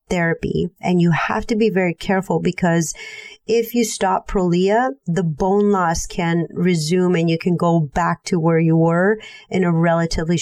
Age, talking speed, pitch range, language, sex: 30-49, 175 wpm, 165-200 Hz, English, female